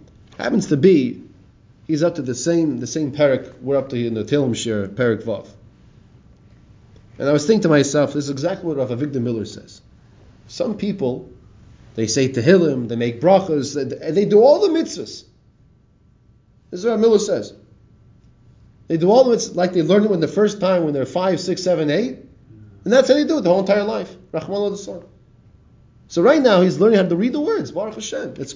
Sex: male